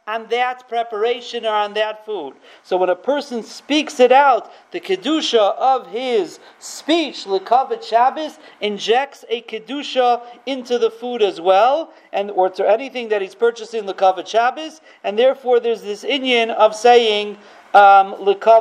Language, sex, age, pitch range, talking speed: English, male, 40-59, 205-275 Hz, 150 wpm